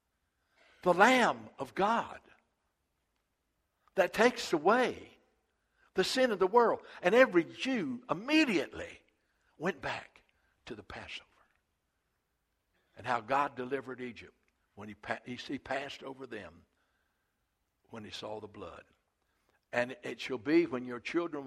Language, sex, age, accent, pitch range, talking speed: English, male, 60-79, American, 125-155 Hz, 125 wpm